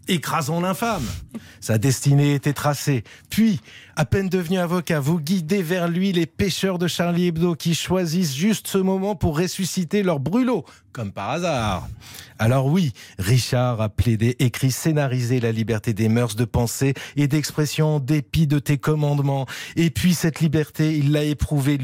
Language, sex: French, male